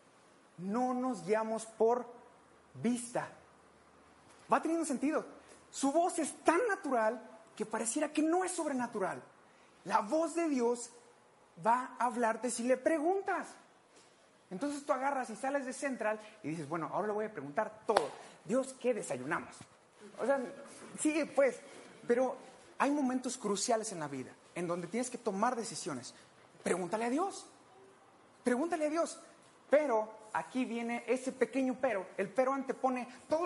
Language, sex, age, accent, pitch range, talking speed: Spanish, male, 30-49, Mexican, 220-285 Hz, 145 wpm